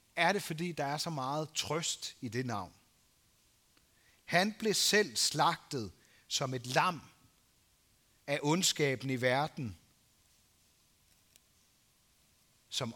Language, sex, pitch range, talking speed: Danish, male, 110-175 Hz, 105 wpm